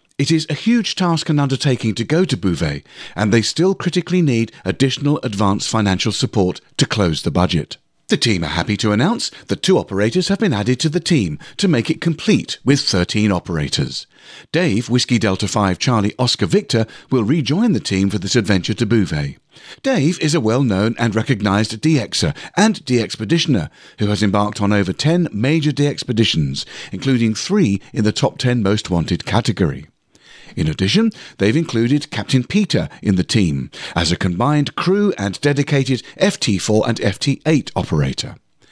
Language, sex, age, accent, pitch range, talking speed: English, male, 50-69, British, 105-155 Hz, 165 wpm